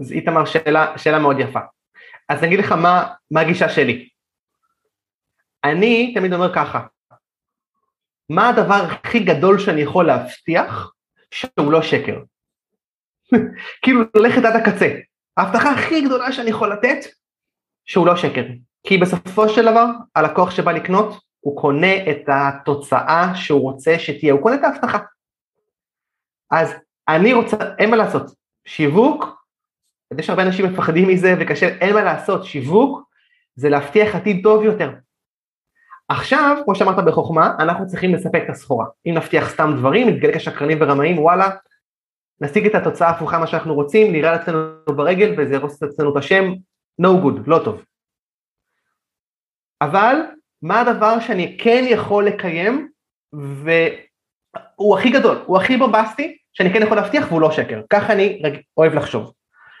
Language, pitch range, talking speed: Hebrew, 155-220 Hz, 135 wpm